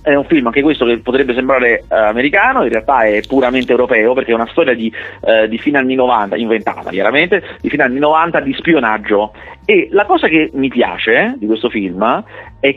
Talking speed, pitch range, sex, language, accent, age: 200 wpm, 120-175 Hz, male, Italian, native, 40-59